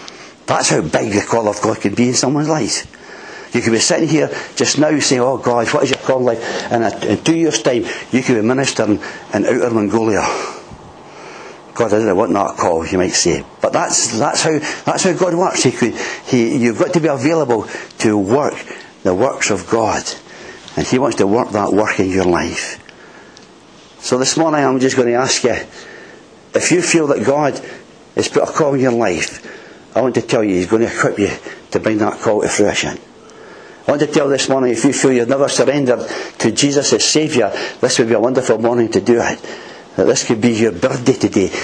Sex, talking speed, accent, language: male, 215 wpm, British, English